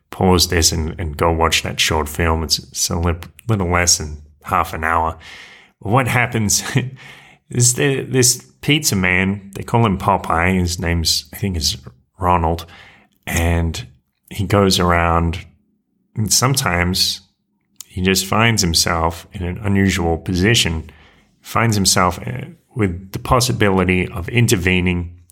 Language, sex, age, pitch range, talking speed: English, male, 30-49, 85-105 Hz, 135 wpm